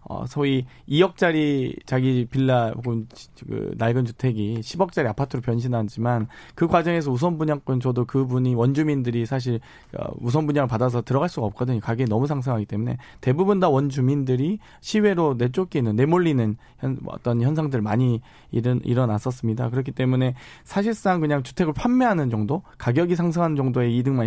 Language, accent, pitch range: Korean, native, 120-155 Hz